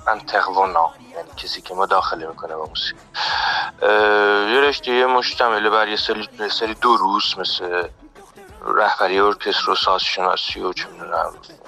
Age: 40-59